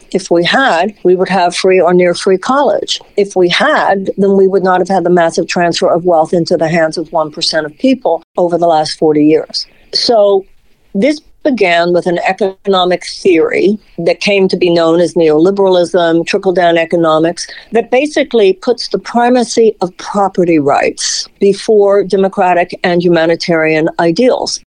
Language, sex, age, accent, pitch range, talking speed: English, female, 60-79, American, 170-210 Hz, 160 wpm